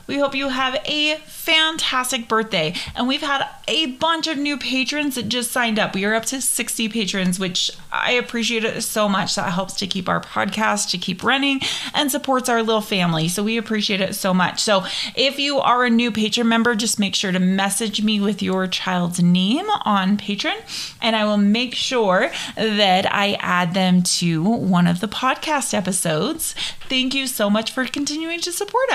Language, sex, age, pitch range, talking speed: English, female, 30-49, 185-245 Hz, 195 wpm